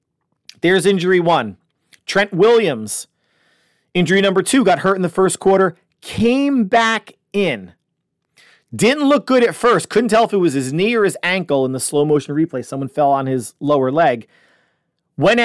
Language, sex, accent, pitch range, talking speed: English, male, American, 145-190 Hz, 170 wpm